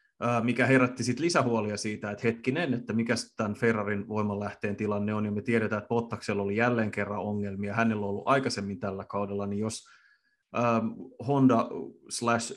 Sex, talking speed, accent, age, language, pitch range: male, 150 wpm, native, 30-49, Finnish, 105-125 Hz